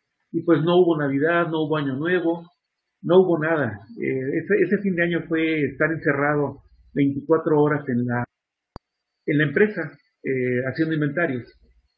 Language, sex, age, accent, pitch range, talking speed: Spanish, male, 50-69, Mexican, 135-170 Hz, 155 wpm